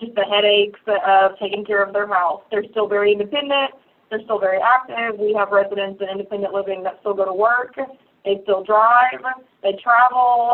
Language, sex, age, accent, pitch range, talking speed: English, female, 30-49, American, 200-230 Hz, 190 wpm